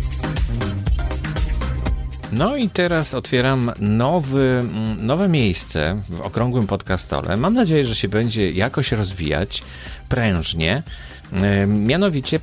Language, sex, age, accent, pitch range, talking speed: Polish, male, 40-59, native, 90-125 Hz, 85 wpm